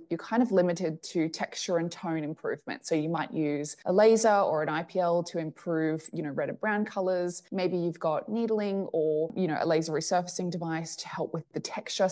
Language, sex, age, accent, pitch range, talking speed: English, female, 20-39, Australian, 165-200 Hz, 210 wpm